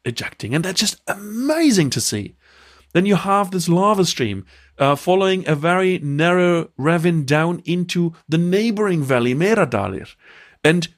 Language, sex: English, male